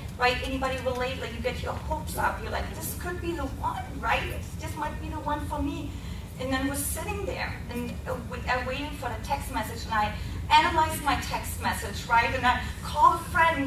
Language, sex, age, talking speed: English, female, 30-49, 205 wpm